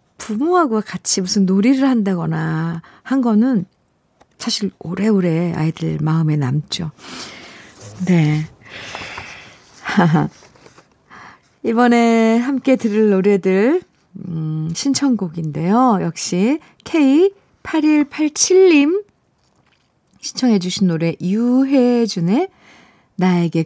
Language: Korean